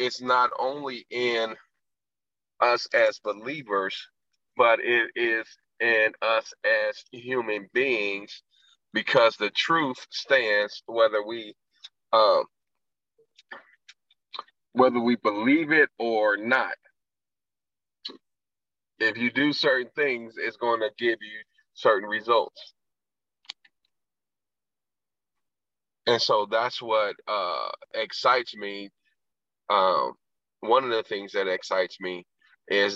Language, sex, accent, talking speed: English, male, American, 100 wpm